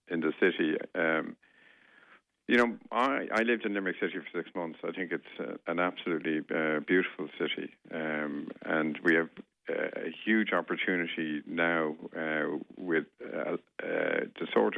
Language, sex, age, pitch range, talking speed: English, male, 70-89, 80-90 Hz, 155 wpm